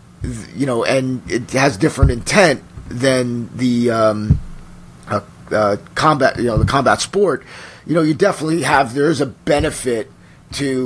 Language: English